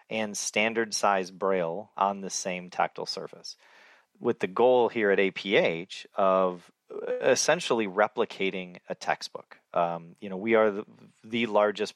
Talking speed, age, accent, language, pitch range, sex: 140 wpm, 30-49, American, English, 85-100 Hz, male